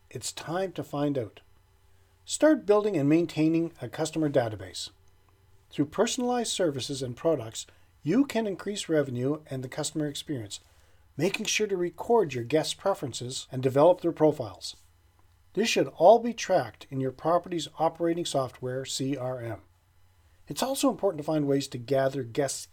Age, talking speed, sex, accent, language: 40-59, 150 wpm, male, American, English